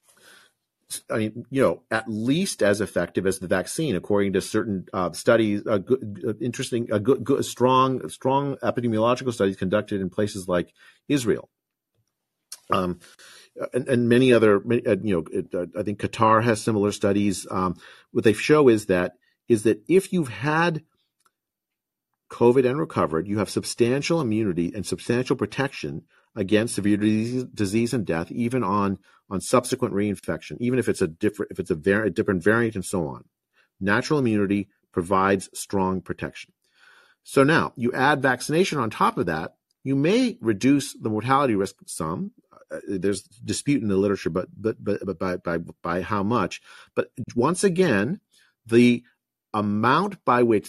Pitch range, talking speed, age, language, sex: 100-130 Hz, 160 wpm, 50-69, English, male